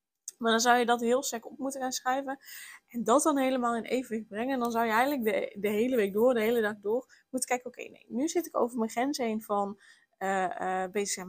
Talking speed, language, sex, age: 260 wpm, Dutch, female, 10-29